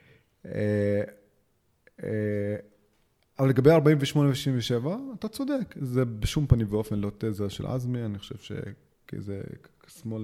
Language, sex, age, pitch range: Hebrew, male, 30-49, 105-140 Hz